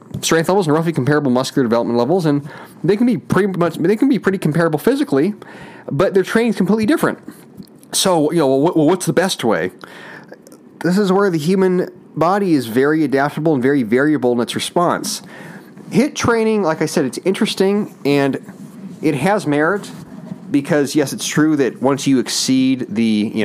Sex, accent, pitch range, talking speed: male, American, 130-195 Hz, 180 wpm